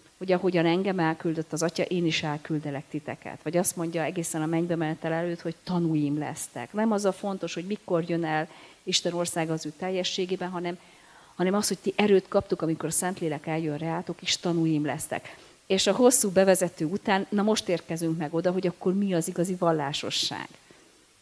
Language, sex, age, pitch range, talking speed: Hungarian, female, 40-59, 160-185 Hz, 185 wpm